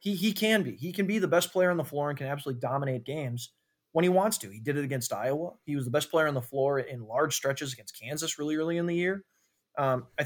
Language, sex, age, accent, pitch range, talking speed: English, male, 20-39, American, 135-165 Hz, 275 wpm